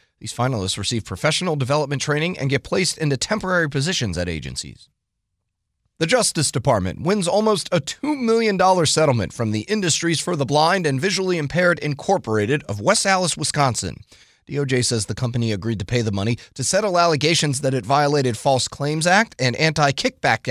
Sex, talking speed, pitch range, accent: male, 165 wpm, 120-165 Hz, American